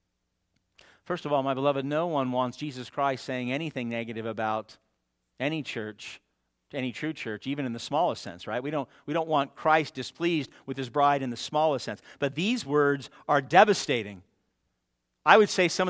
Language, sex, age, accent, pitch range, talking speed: English, male, 50-69, American, 135-200 Hz, 180 wpm